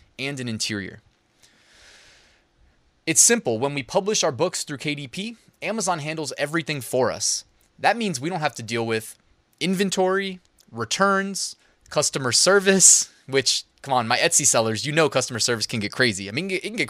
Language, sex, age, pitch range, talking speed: English, male, 20-39, 125-185 Hz, 165 wpm